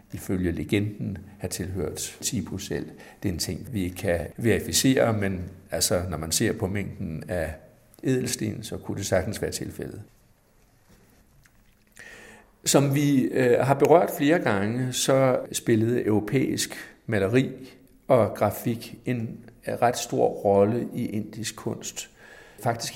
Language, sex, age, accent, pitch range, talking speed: Danish, male, 60-79, native, 100-125 Hz, 125 wpm